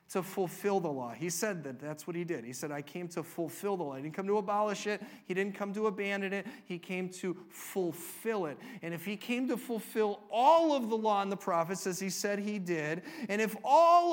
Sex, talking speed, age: male, 240 wpm, 40-59